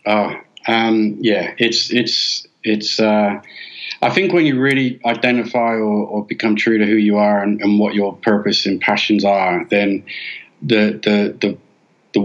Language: English